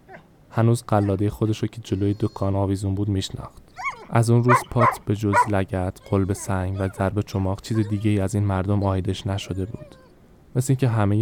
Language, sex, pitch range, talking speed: Persian, male, 95-115 Hz, 175 wpm